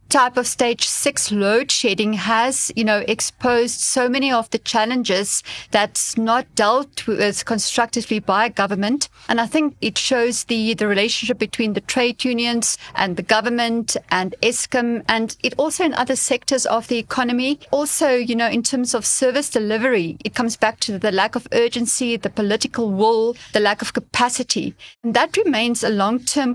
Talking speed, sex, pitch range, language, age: 170 wpm, female, 210-250 Hz, English, 30-49